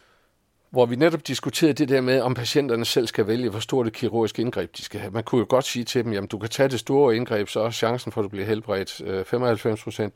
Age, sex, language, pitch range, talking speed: 50-69, male, Danish, 100-125 Hz, 255 wpm